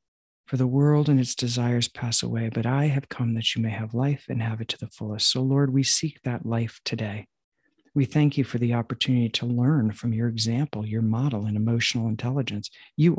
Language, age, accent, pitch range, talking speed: English, 50-69, American, 115-140 Hz, 215 wpm